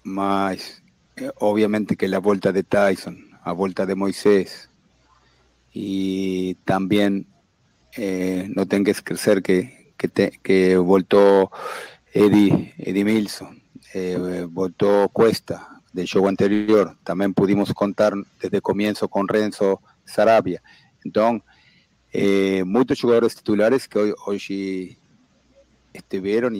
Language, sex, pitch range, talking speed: Portuguese, male, 95-105 Hz, 110 wpm